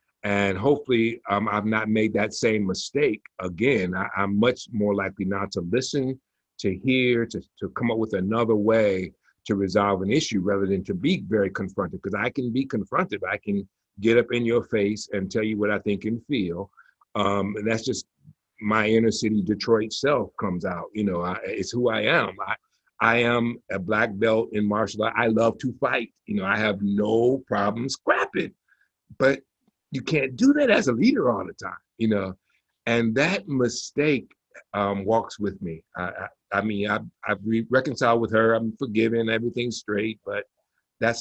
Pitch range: 100-115 Hz